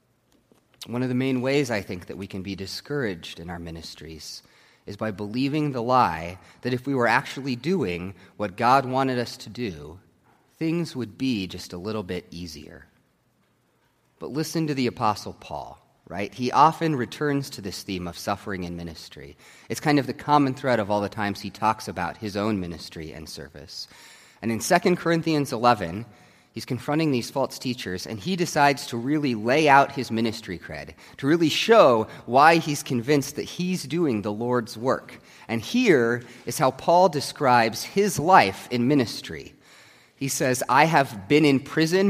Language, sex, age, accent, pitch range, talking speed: English, male, 30-49, American, 100-150 Hz, 175 wpm